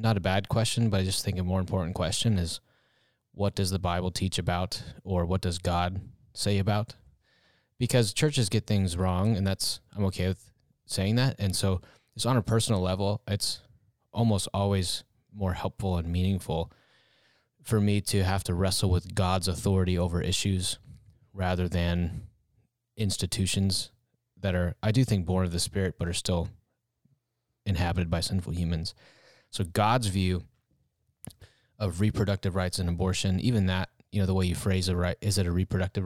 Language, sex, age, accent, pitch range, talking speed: English, male, 20-39, American, 90-110 Hz, 170 wpm